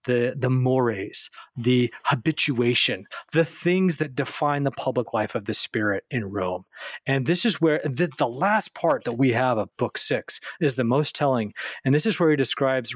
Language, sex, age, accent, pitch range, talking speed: English, male, 30-49, American, 135-175 Hz, 190 wpm